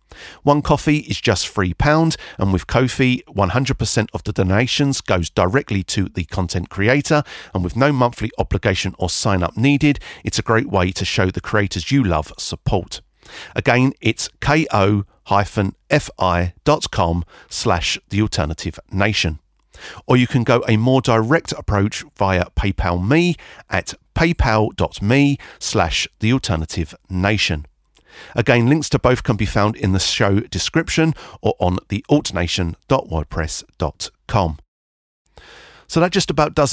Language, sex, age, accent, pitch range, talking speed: English, male, 50-69, British, 90-130 Hz, 135 wpm